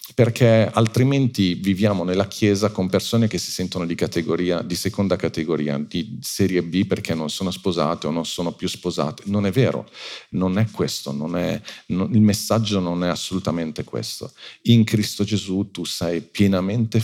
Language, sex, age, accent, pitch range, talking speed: Italian, male, 40-59, native, 90-110 Hz, 170 wpm